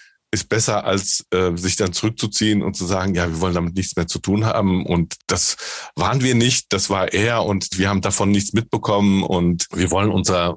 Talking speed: 210 wpm